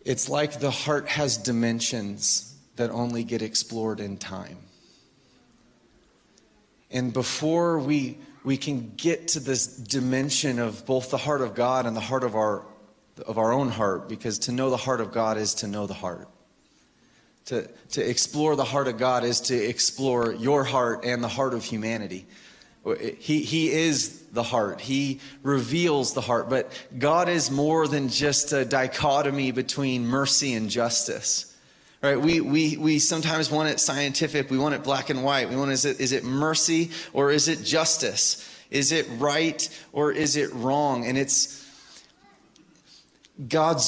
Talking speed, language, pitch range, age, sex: 165 wpm, English, 125-155 Hz, 30-49, male